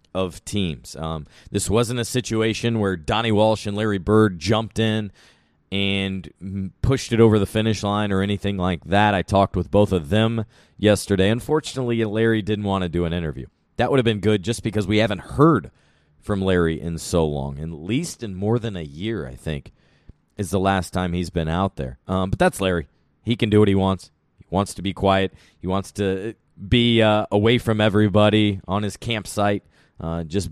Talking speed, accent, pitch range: 200 wpm, American, 90-115 Hz